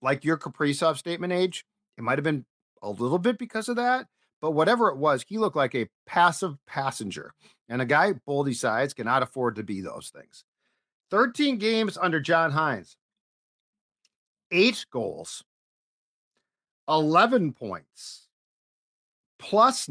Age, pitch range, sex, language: 50-69, 120-165 Hz, male, English